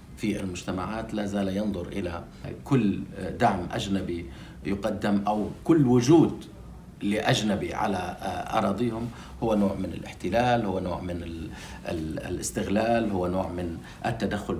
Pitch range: 90-110 Hz